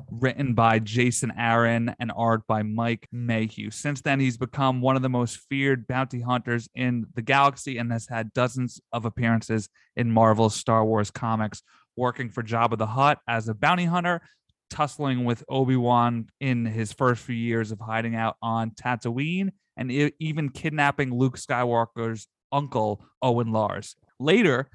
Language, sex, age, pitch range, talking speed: English, male, 30-49, 115-135 Hz, 160 wpm